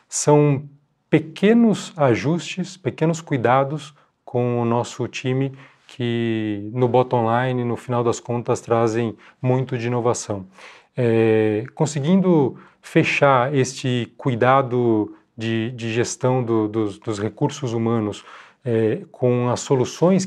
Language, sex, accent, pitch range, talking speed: Portuguese, male, Brazilian, 120-155 Hz, 110 wpm